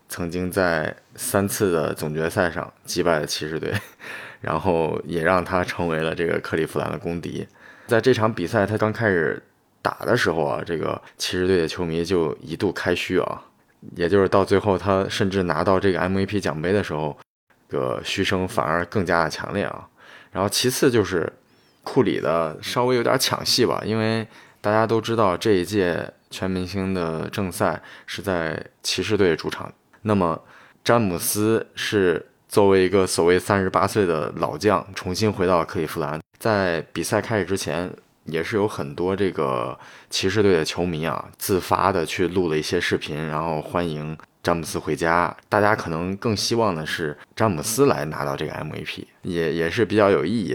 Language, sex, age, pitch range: Chinese, male, 20-39, 85-105 Hz